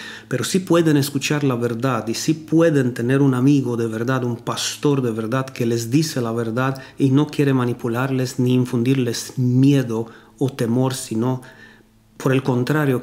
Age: 40-59